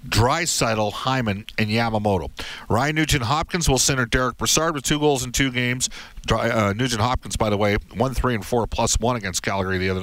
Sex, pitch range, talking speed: male, 105-135 Hz, 190 wpm